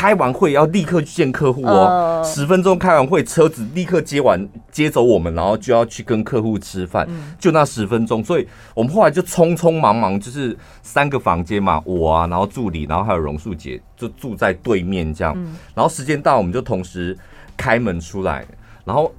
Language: Chinese